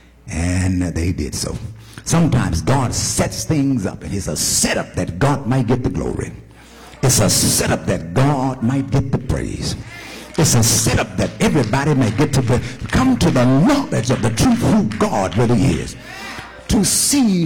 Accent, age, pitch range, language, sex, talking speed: American, 60-79, 105-150 Hz, English, male, 170 wpm